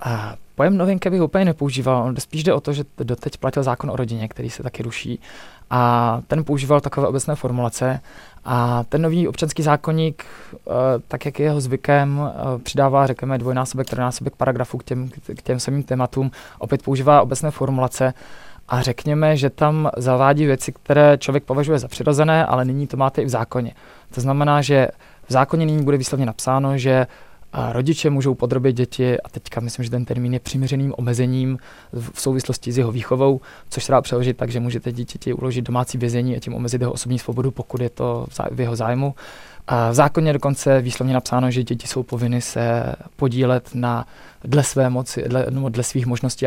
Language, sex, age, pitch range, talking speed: Czech, male, 20-39, 125-140 Hz, 185 wpm